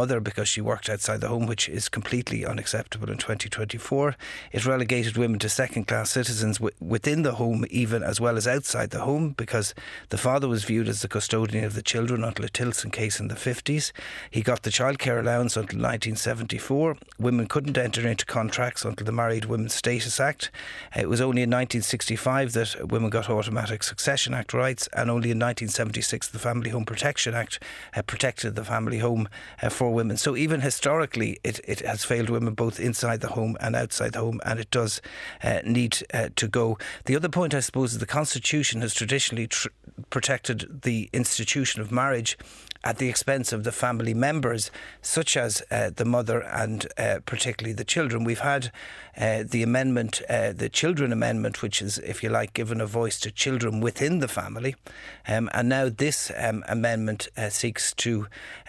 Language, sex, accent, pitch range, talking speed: English, male, Irish, 110-125 Hz, 185 wpm